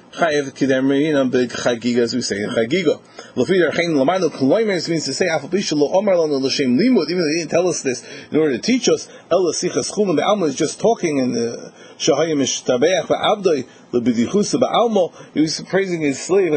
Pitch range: 140-210 Hz